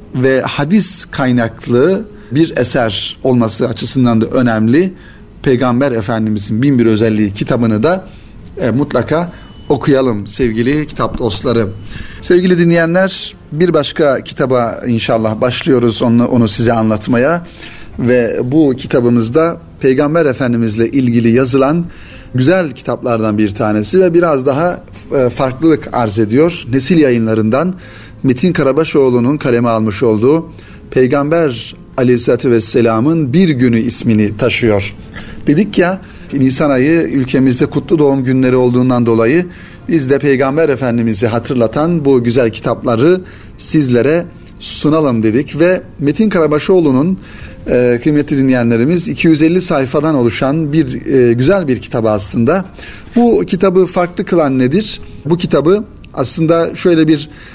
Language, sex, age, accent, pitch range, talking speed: Turkish, male, 40-59, native, 115-160 Hz, 115 wpm